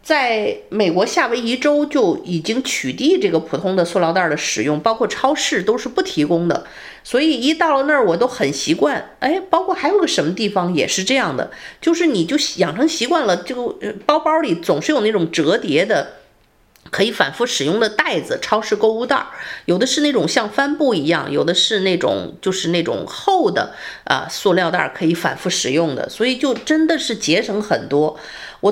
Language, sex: Chinese, female